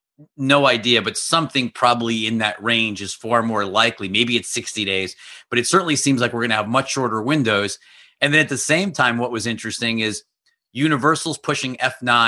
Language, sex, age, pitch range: English, male, 40-59, 105-125 Hz